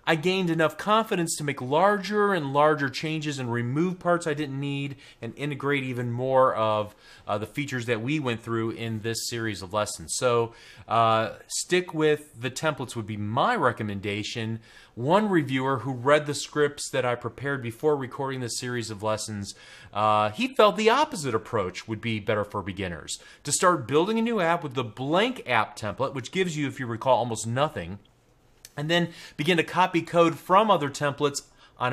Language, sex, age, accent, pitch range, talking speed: English, male, 30-49, American, 115-165 Hz, 185 wpm